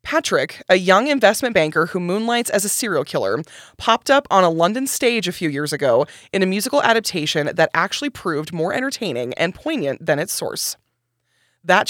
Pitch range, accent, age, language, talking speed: 170-220 Hz, American, 20-39, English, 180 wpm